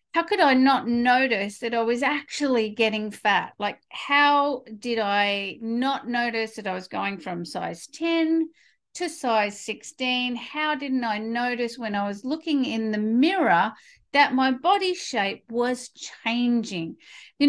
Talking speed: 155 wpm